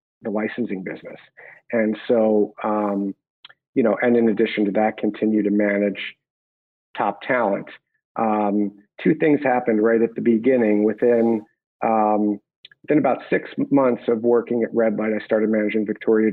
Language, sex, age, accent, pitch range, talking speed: English, male, 40-59, American, 105-115 Hz, 150 wpm